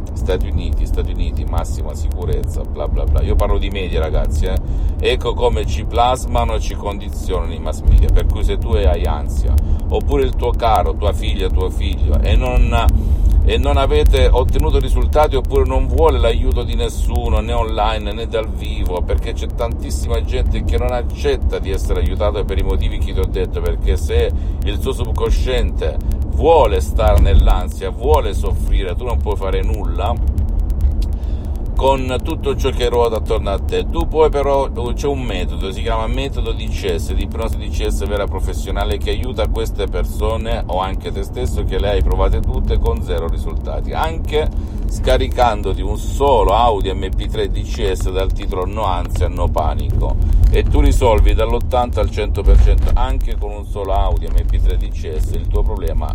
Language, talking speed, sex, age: Italian, 165 wpm, male, 50-69